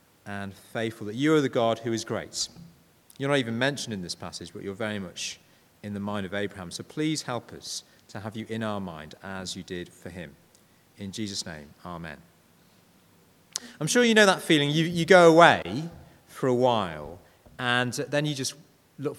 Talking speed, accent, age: 195 wpm, British, 40-59